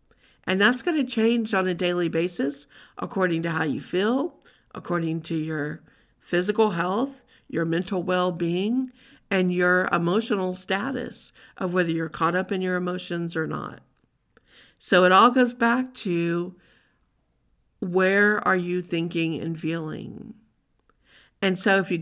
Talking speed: 140 wpm